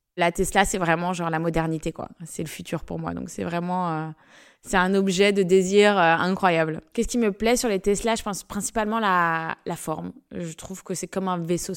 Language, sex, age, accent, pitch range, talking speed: French, female, 20-39, French, 180-215 Hz, 225 wpm